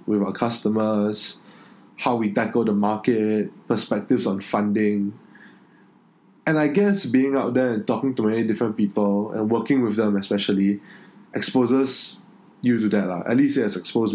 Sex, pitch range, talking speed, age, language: male, 105-130 Hz, 160 wpm, 20-39, English